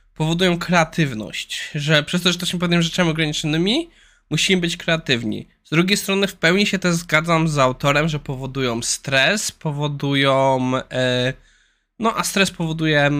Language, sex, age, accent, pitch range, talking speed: Polish, male, 20-39, native, 135-185 Hz, 145 wpm